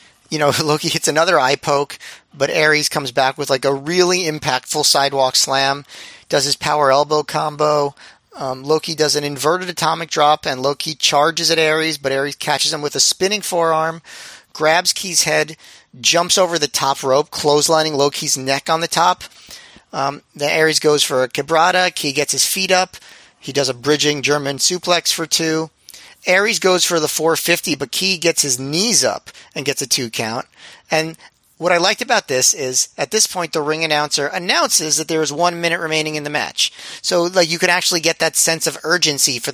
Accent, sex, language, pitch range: American, male, English, 145-165 Hz